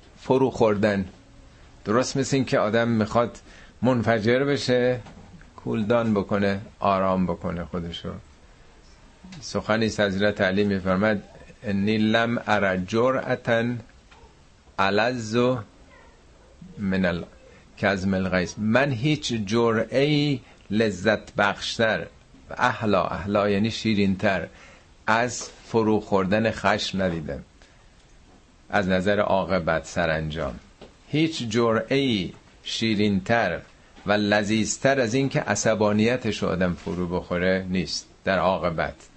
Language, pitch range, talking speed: Persian, 95-115 Hz, 90 wpm